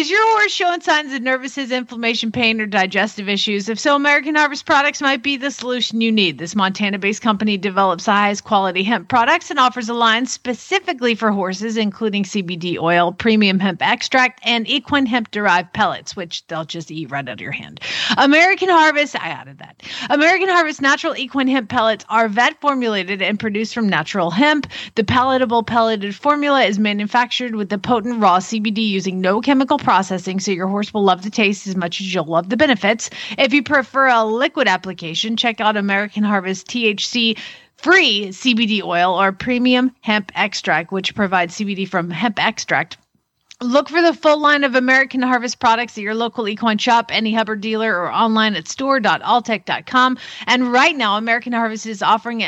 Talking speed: 180 wpm